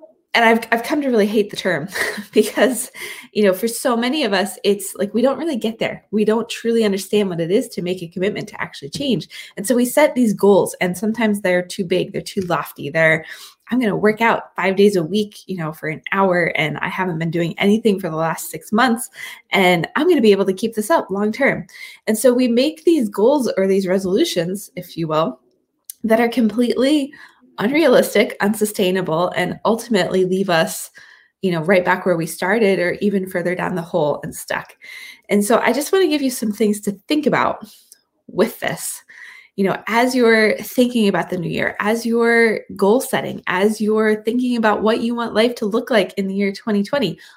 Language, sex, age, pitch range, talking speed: English, female, 20-39, 185-235 Hz, 215 wpm